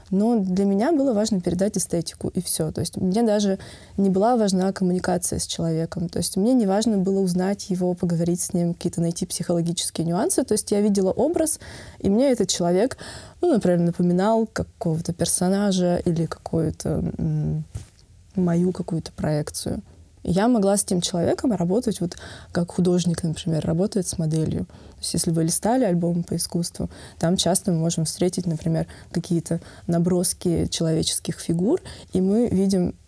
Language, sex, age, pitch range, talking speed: Russian, female, 20-39, 170-200 Hz, 155 wpm